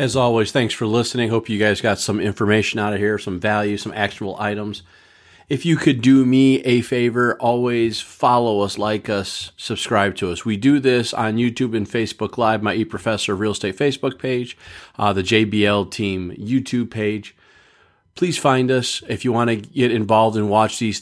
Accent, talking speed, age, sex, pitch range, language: American, 190 wpm, 30-49, male, 100-125 Hz, English